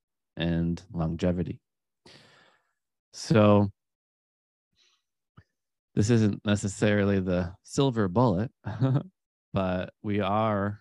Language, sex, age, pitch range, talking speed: English, male, 20-39, 85-100 Hz, 65 wpm